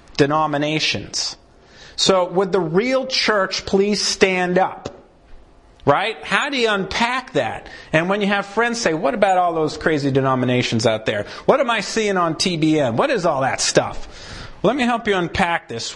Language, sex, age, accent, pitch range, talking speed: English, male, 40-59, American, 155-220 Hz, 175 wpm